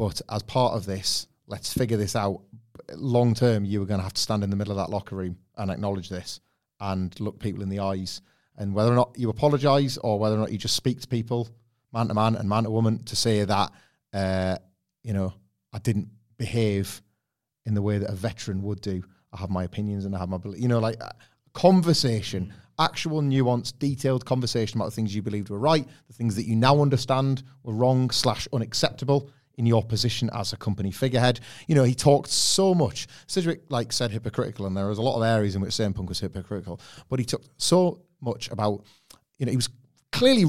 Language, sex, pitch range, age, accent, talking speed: English, male, 105-125 Hz, 30-49, British, 220 wpm